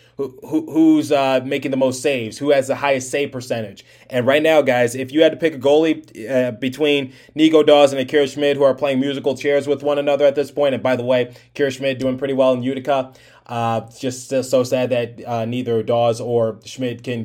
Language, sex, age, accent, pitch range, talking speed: English, male, 20-39, American, 120-145 Hz, 225 wpm